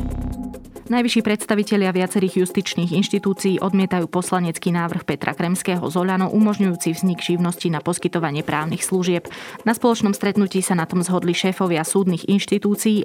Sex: female